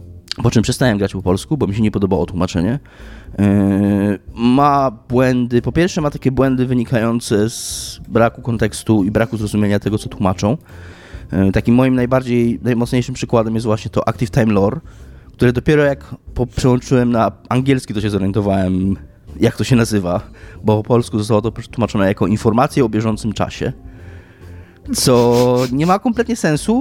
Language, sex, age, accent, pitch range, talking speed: Polish, male, 20-39, native, 105-140 Hz, 155 wpm